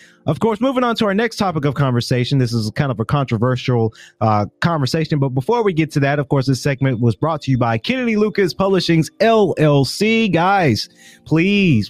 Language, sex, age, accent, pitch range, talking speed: English, male, 30-49, American, 120-165 Hz, 195 wpm